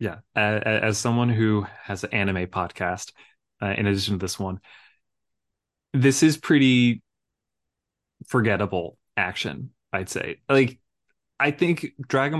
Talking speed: 125 wpm